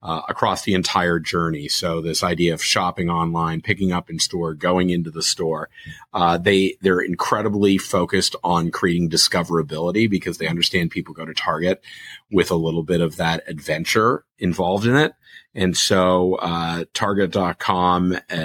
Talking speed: 160 wpm